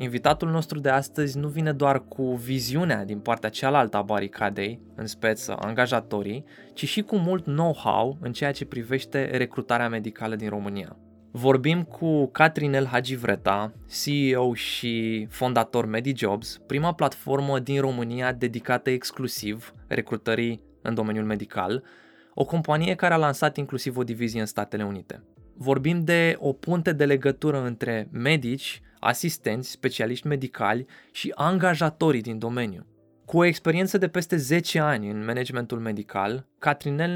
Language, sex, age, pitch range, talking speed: Romanian, male, 20-39, 115-150 Hz, 135 wpm